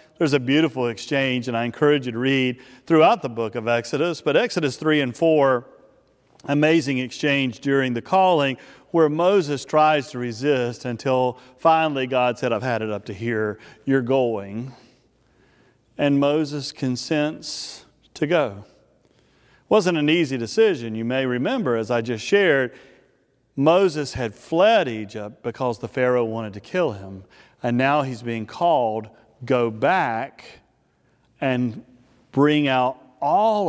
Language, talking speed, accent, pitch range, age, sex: English, 145 wpm, American, 120-150 Hz, 40-59, male